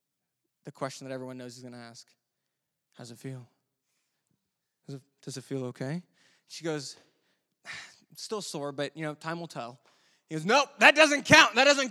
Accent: American